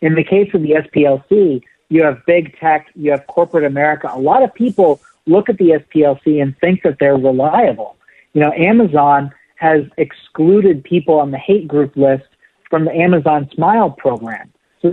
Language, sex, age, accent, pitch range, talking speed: English, male, 50-69, American, 145-190 Hz, 175 wpm